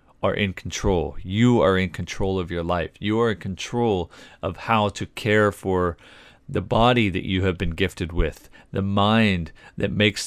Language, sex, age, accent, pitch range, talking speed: English, male, 40-59, American, 85-105 Hz, 180 wpm